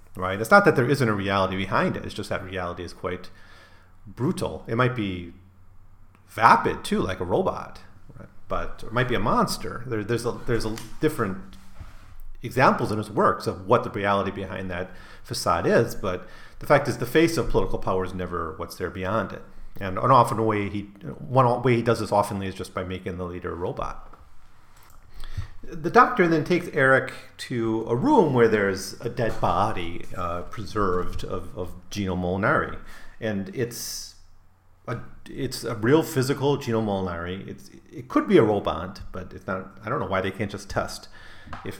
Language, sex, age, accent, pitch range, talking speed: English, male, 40-59, American, 95-115 Hz, 185 wpm